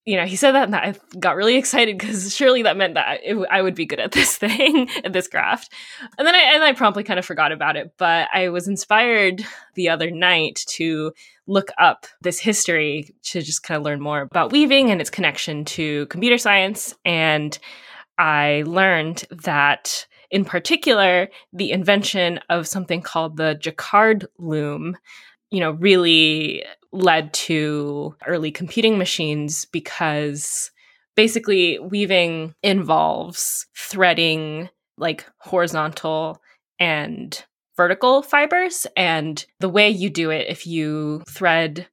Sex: female